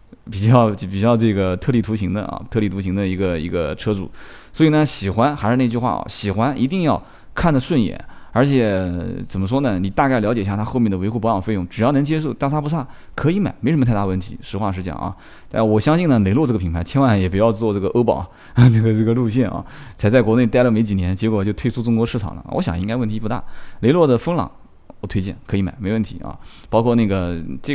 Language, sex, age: Chinese, male, 20-39